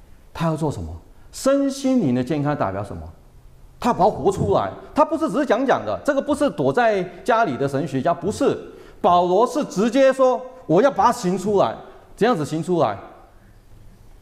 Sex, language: male, Chinese